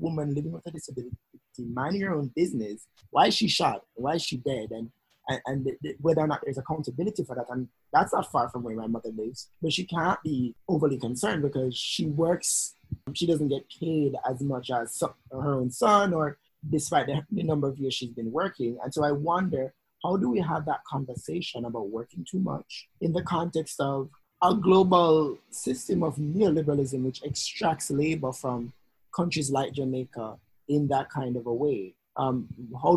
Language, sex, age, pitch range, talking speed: English, male, 20-39, 125-155 Hz, 185 wpm